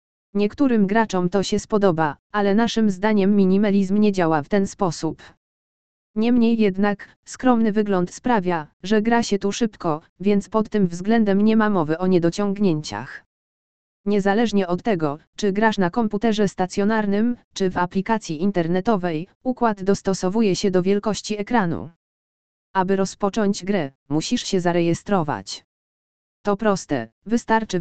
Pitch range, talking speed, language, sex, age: 180-215 Hz, 130 wpm, Polish, female, 20-39